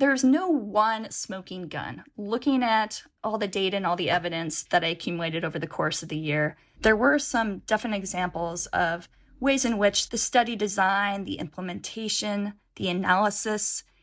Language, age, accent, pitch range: English, 20-39, American, 185-230 Hz